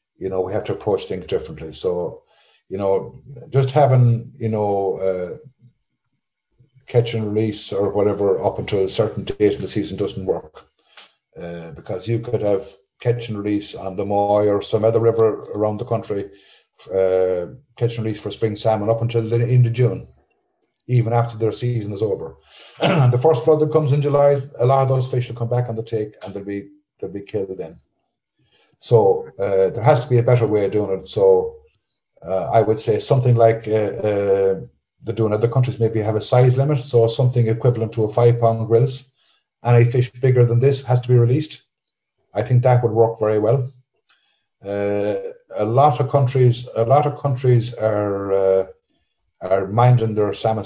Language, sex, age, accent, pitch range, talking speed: English, male, 50-69, Irish, 105-130 Hz, 190 wpm